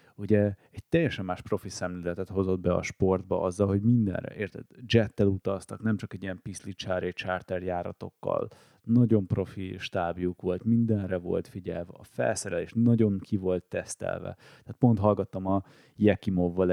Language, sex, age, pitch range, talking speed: Hungarian, male, 30-49, 90-100 Hz, 150 wpm